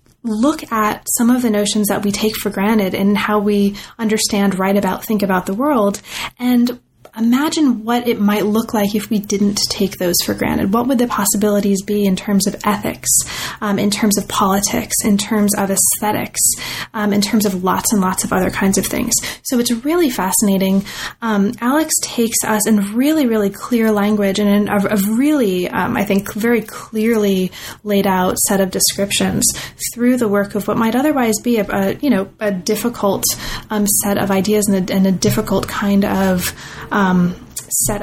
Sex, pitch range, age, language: female, 200-235 Hz, 20-39, English